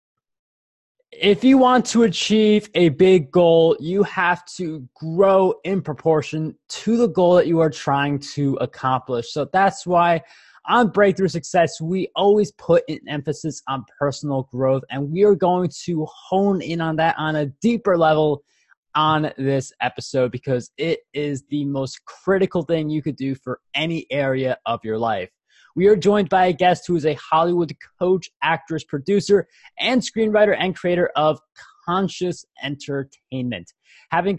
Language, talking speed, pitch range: English, 155 wpm, 145-185 Hz